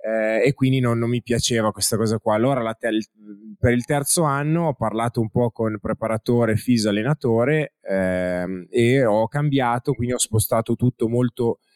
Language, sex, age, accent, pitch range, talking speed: Italian, male, 20-39, native, 105-125 Hz, 175 wpm